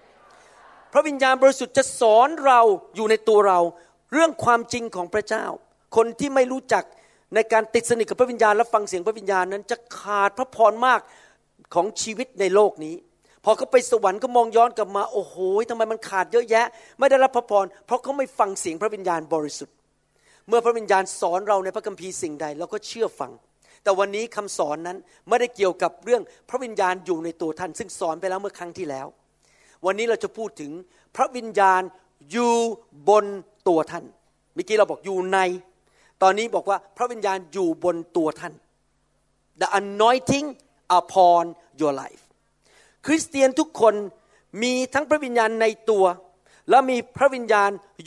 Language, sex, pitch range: Thai, male, 185-240 Hz